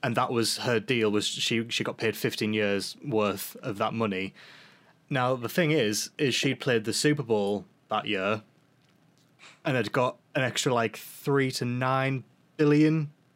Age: 20-39